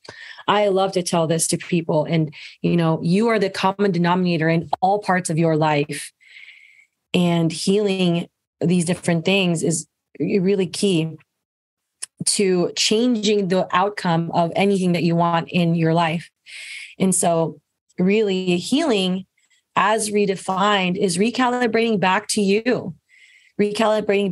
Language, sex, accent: English, female, American